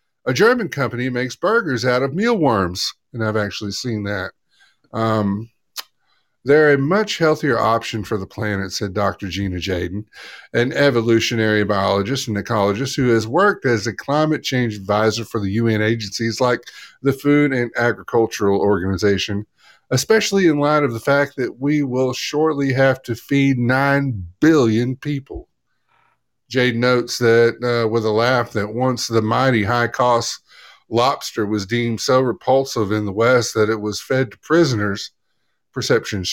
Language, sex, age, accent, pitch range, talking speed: English, male, 50-69, American, 110-135 Hz, 155 wpm